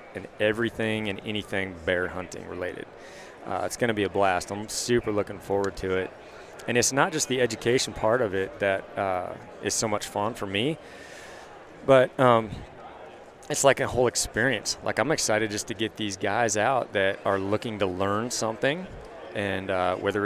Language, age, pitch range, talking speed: English, 30-49, 100-115 Hz, 180 wpm